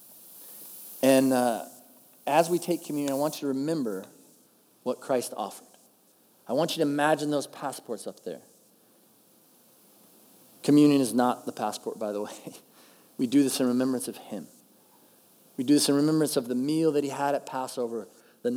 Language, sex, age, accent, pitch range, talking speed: English, male, 40-59, American, 135-170 Hz, 170 wpm